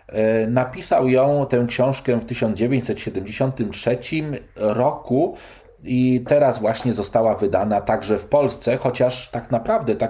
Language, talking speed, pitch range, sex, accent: Polish, 115 wpm, 100-125 Hz, male, native